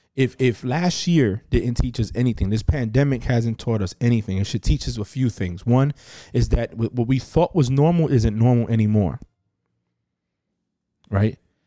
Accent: American